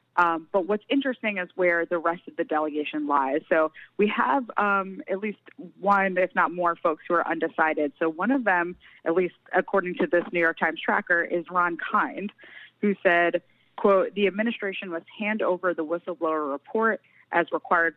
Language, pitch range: English, 165-200 Hz